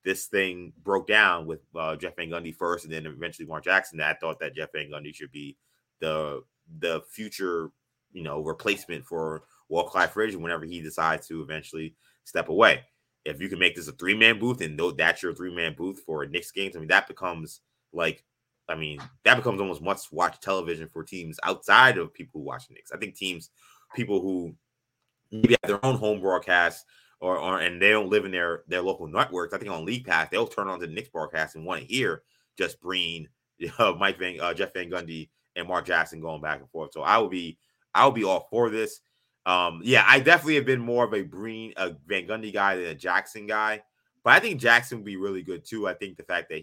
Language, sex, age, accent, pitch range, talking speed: English, male, 20-39, American, 80-110 Hz, 215 wpm